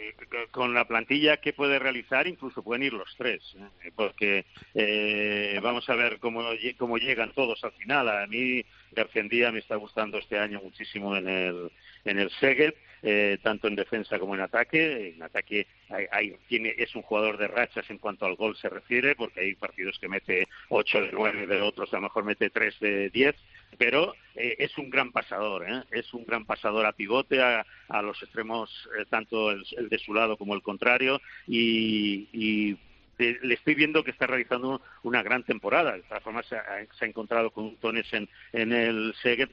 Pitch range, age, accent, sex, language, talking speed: 105-130 Hz, 50-69, Spanish, male, Spanish, 200 wpm